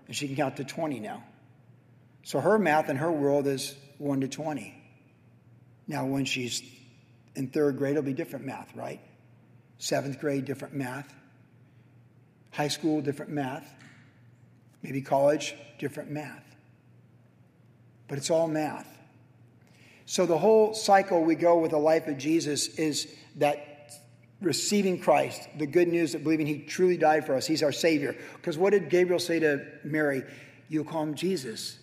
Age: 50-69